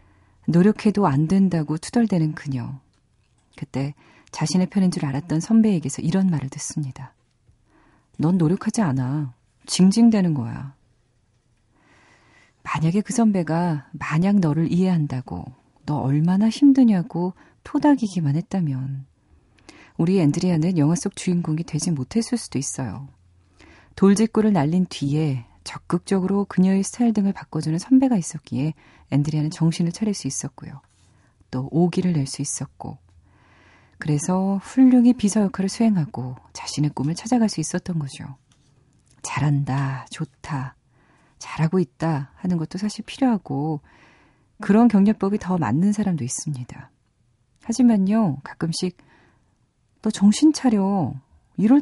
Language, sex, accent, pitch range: Korean, female, native, 135-195 Hz